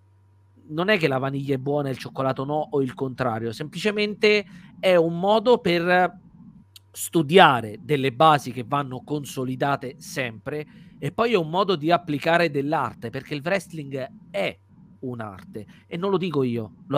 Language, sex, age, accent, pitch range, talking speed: Italian, male, 40-59, native, 130-175 Hz, 160 wpm